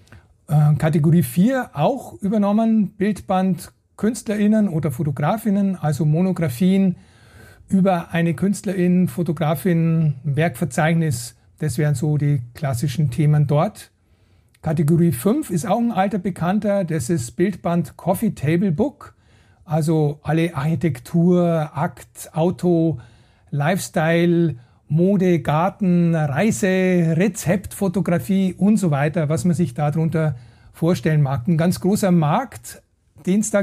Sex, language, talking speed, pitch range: male, German, 110 wpm, 150-185 Hz